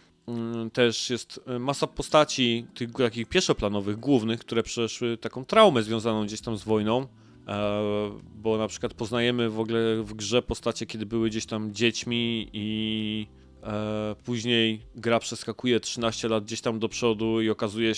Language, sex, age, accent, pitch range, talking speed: Polish, male, 20-39, native, 105-125 Hz, 145 wpm